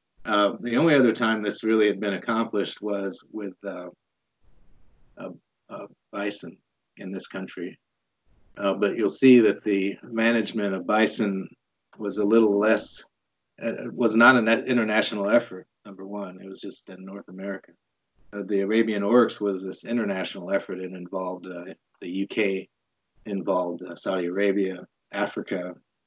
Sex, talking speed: male, 145 wpm